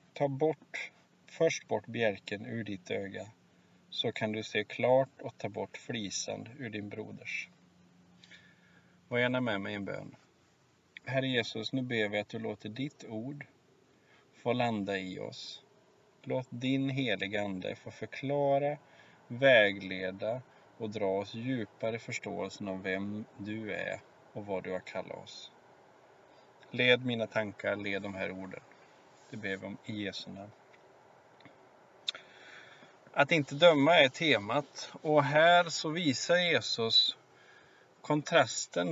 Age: 30-49